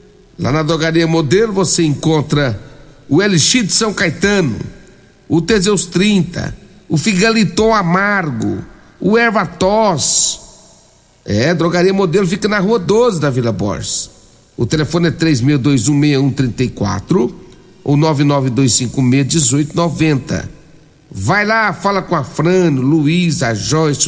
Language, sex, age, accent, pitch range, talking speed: Portuguese, male, 60-79, Brazilian, 145-190 Hz, 110 wpm